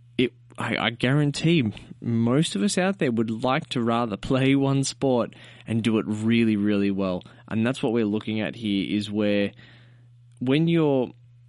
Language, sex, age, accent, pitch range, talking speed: English, male, 20-39, Australian, 105-125 Hz, 160 wpm